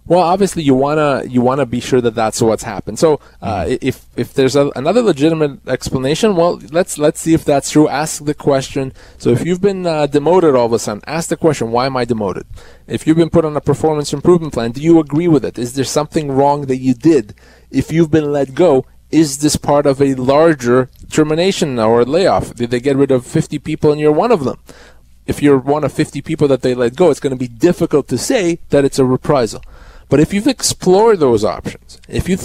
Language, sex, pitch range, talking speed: English, male, 125-155 Hz, 230 wpm